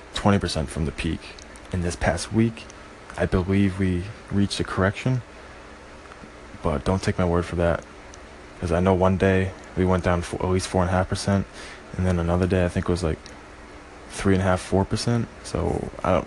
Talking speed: 205 wpm